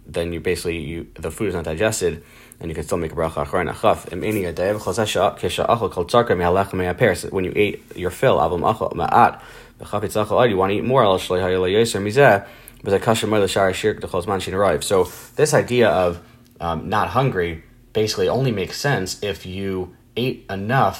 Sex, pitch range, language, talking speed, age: male, 90-115 Hz, English, 130 wpm, 30-49